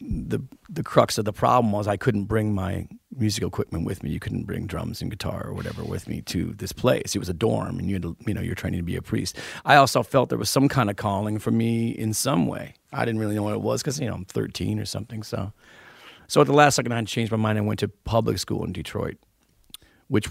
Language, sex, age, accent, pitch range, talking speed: English, male, 40-59, American, 100-115 Hz, 265 wpm